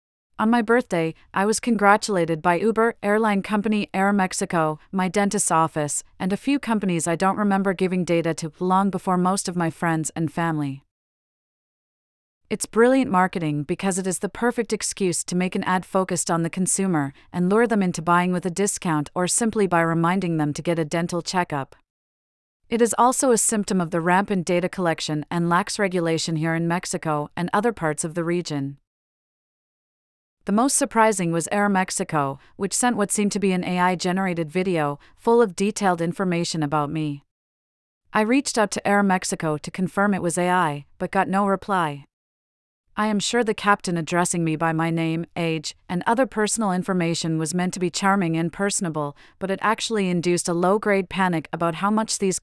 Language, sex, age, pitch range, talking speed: English, female, 40-59, 165-200 Hz, 185 wpm